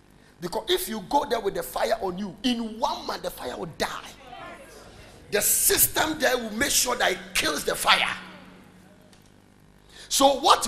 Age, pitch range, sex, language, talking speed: 50-69, 225-310 Hz, male, English, 170 wpm